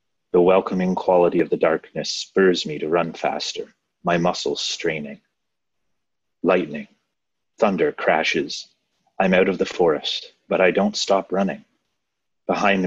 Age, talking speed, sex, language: 30-49, 130 wpm, male, English